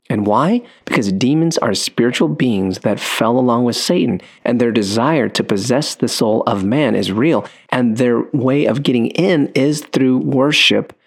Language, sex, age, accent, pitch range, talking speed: English, male, 30-49, American, 100-120 Hz, 175 wpm